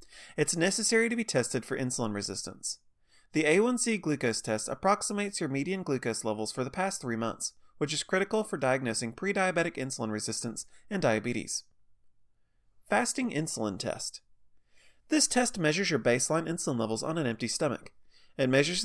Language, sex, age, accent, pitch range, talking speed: English, male, 30-49, American, 120-195 Hz, 155 wpm